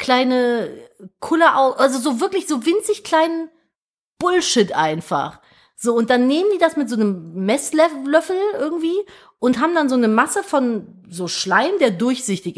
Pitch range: 225-320 Hz